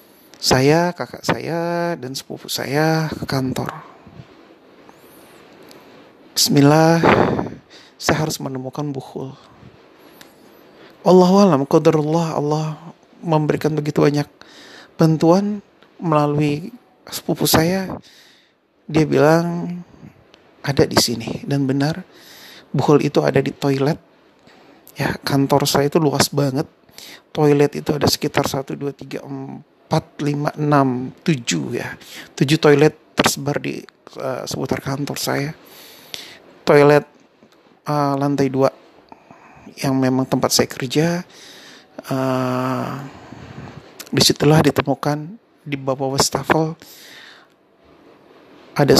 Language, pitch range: Indonesian, 135-160 Hz